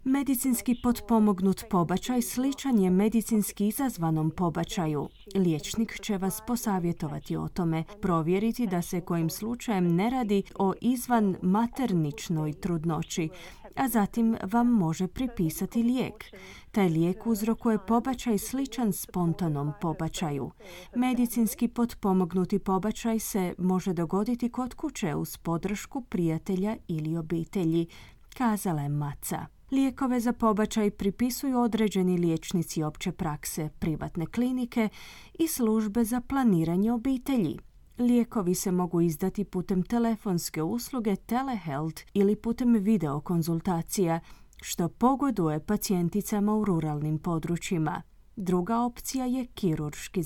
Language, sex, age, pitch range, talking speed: Croatian, female, 30-49, 170-235 Hz, 105 wpm